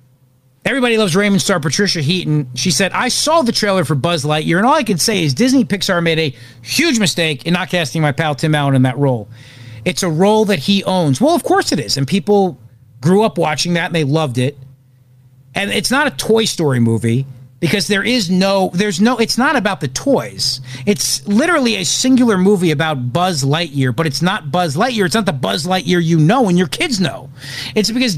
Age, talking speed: 40-59, 215 wpm